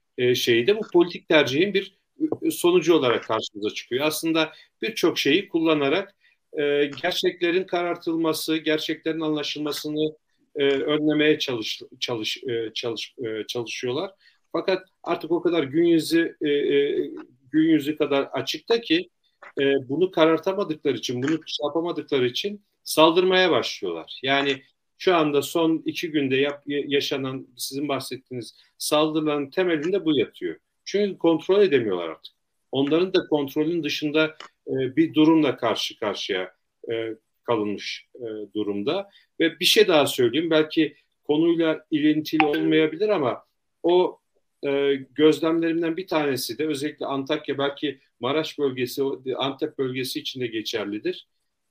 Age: 50-69